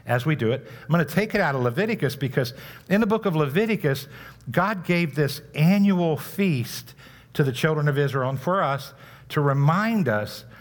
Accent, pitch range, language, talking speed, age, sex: American, 120-155 Hz, English, 190 wpm, 60-79, male